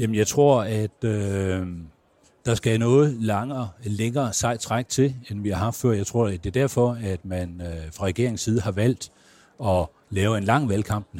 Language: Danish